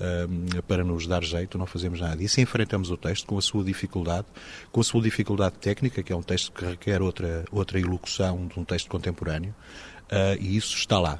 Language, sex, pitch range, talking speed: Portuguese, male, 90-110 Hz, 210 wpm